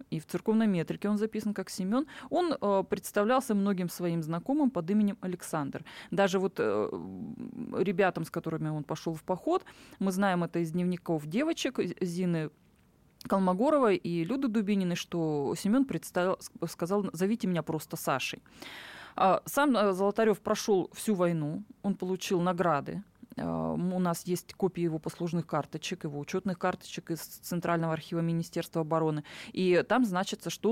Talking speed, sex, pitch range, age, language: 145 wpm, female, 170-215 Hz, 20-39, Russian